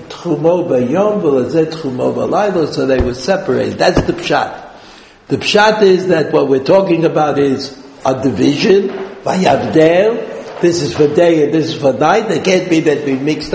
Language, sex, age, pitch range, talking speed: English, male, 60-79, 150-190 Hz, 145 wpm